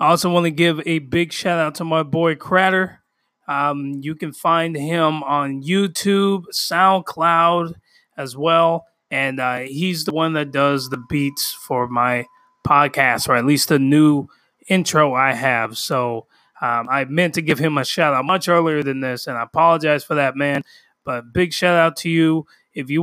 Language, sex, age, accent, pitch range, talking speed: English, male, 20-39, American, 140-170 Hz, 175 wpm